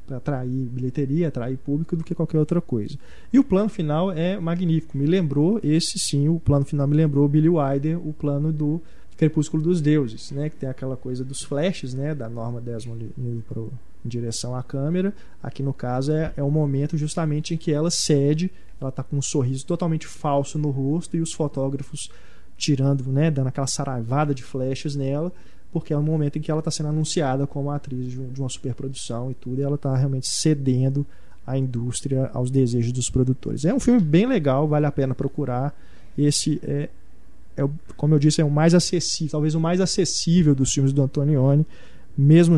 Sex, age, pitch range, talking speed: male, 20-39, 130-160 Hz, 195 wpm